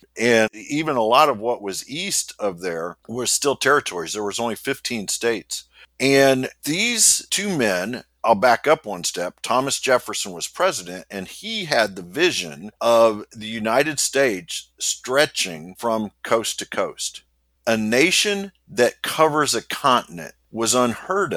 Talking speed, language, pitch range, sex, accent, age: 150 wpm, English, 105-140 Hz, male, American, 50-69